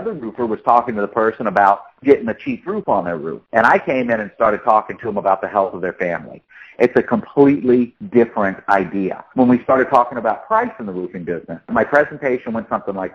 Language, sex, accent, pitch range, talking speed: English, male, American, 95-120 Hz, 235 wpm